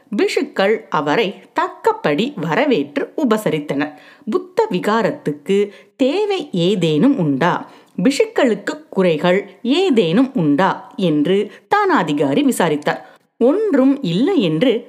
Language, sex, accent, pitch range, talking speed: Tamil, female, native, 180-285 Hz, 80 wpm